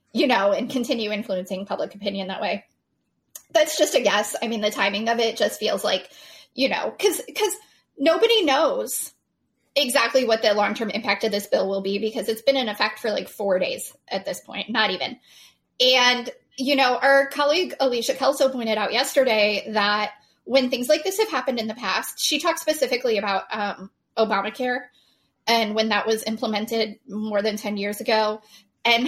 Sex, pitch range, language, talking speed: female, 210-280 Hz, English, 185 wpm